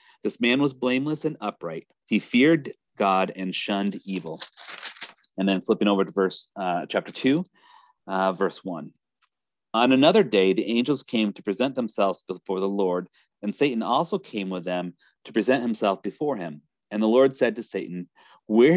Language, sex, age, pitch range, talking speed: English, male, 40-59, 95-130 Hz, 175 wpm